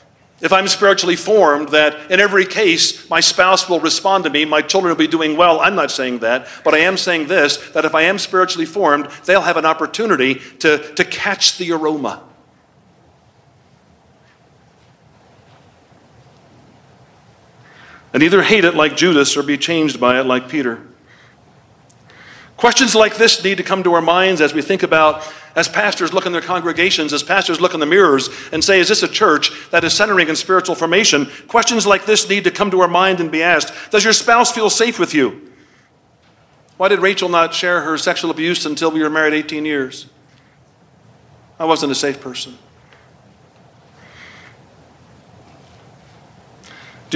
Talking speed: 170 wpm